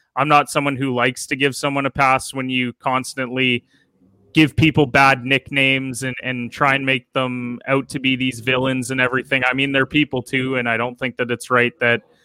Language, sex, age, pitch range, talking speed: English, male, 20-39, 125-140 Hz, 210 wpm